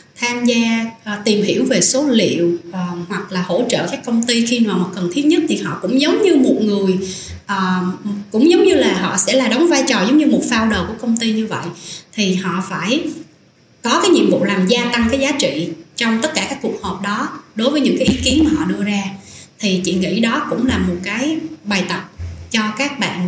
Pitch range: 190-260 Hz